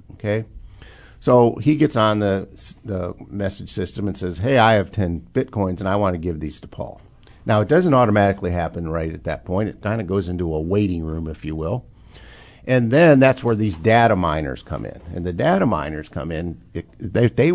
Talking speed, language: 210 wpm, English